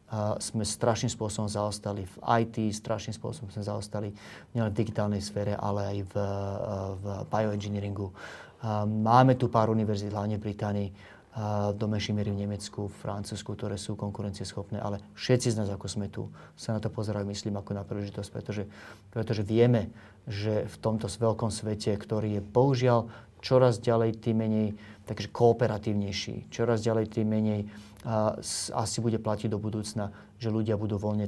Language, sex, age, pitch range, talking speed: Slovak, male, 30-49, 100-110 Hz, 160 wpm